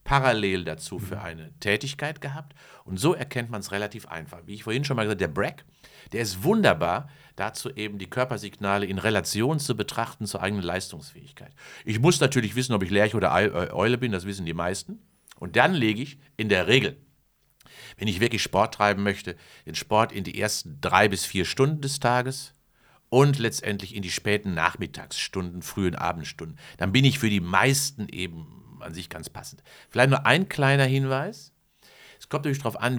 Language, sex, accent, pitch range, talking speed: German, male, German, 95-135 Hz, 185 wpm